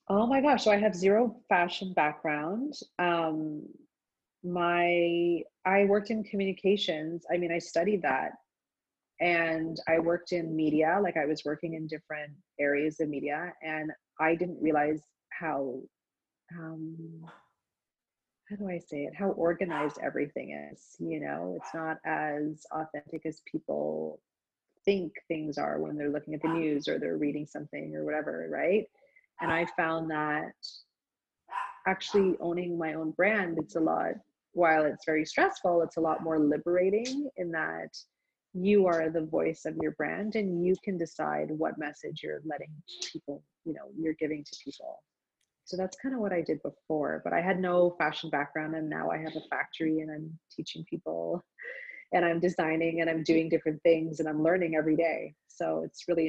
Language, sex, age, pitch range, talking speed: English, female, 30-49, 155-180 Hz, 170 wpm